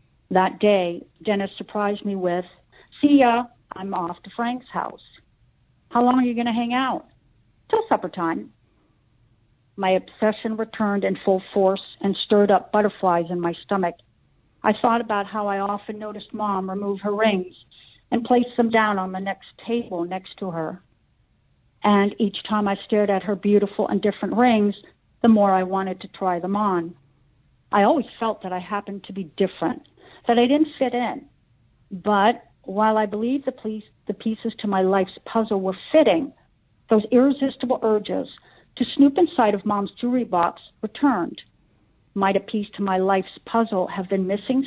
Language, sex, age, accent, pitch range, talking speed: English, female, 60-79, American, 185-230 Hz, 170 wpm